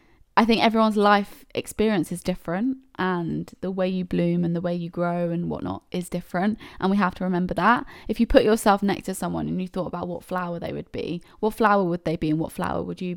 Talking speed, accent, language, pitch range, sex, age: 240 wpm, British, English, 175-215 Hz, female, 20-39